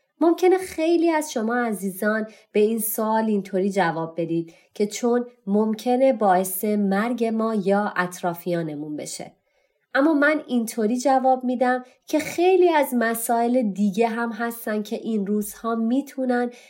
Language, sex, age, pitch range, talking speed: Persian, female, 30-49, 195-250 Hz, 130 wpm